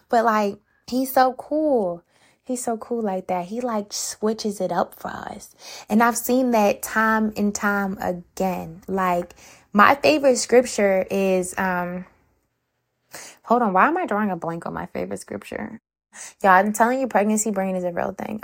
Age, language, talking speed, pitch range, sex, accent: 20-39, English, 175 wpm, 185-265 Hz, female, American